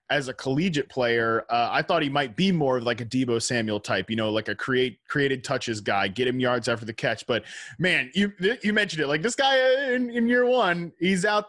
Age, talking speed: 20-39, 240 wpm